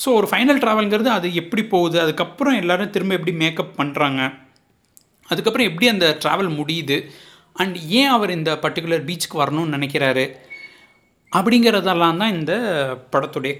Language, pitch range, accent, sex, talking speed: Tamil, 150-220 Hz, native, male, 130 wpm